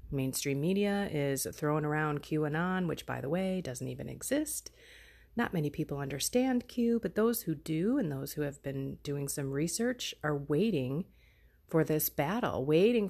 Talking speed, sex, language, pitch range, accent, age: 165 wpm, female, English, 150-200 Hz, American, 30-49